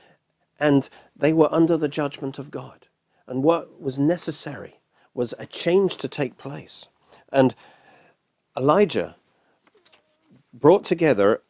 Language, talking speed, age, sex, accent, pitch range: English, 115 wpm, 50-69, male, British, 120-160 Hz